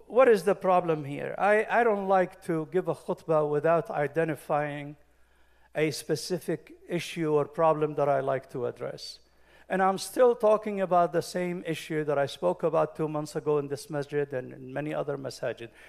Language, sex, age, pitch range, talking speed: English, male, 50-69, 155-215 Hz, 180 wpm